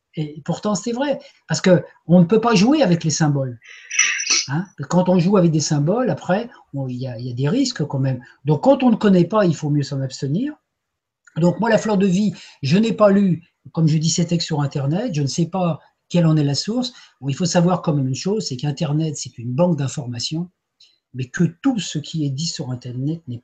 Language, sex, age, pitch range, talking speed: French, male, 40-59, 135-180 Hz, 235 wpm